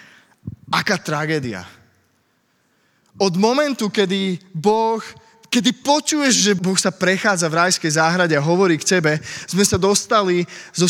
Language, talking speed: Czech, 125 wpm